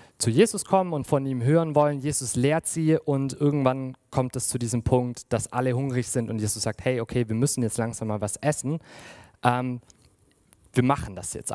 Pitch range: 120-150 Hz